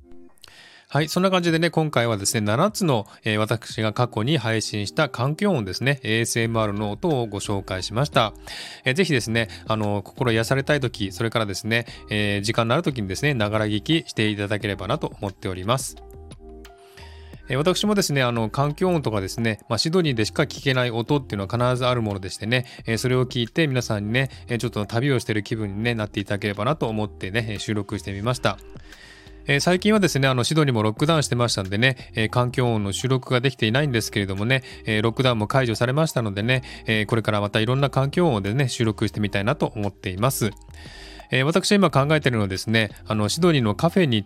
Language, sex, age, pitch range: Japanese, male, 20-39, 105-135 Hz